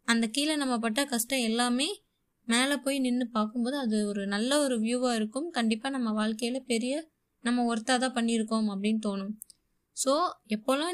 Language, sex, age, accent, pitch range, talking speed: Tamil, female, 20-39, native, 215-265 Hz, 155 wpm